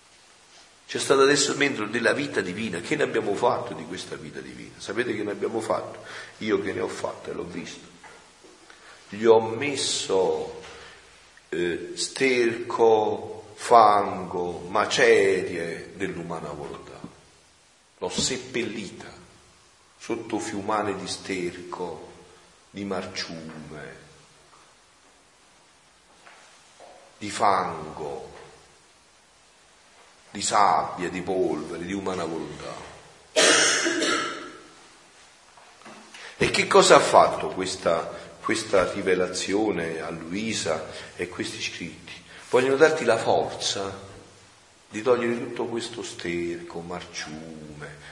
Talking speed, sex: 95 wpm, male